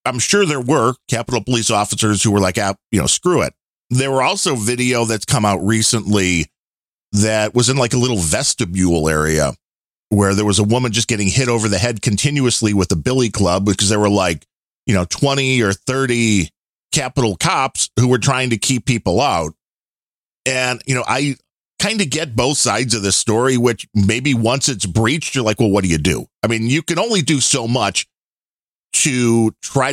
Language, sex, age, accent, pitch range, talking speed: English, male, 40-59, American, 100-135 Hz, 200 wpm